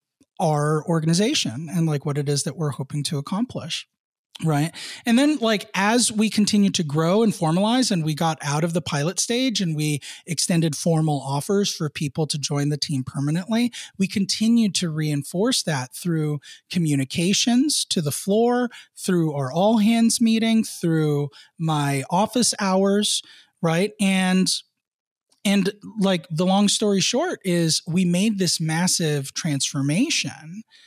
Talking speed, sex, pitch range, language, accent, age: 150 wpm, male, 150-205 Hz, English, American, 30-49